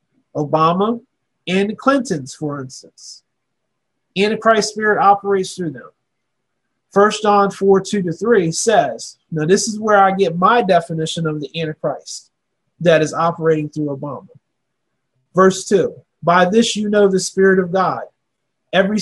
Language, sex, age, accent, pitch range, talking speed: English, male, 30-49, American, 160-200 Hz, 135 wpm